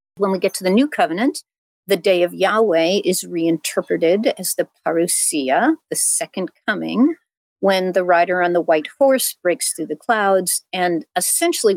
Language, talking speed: English, 165 wpm